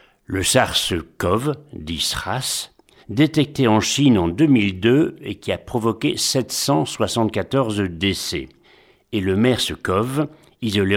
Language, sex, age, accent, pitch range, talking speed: French, male, 60-79, French, 100-140 Hz, 100 wpm